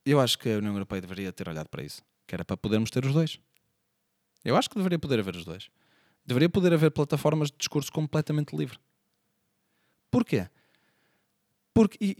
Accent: Portuguese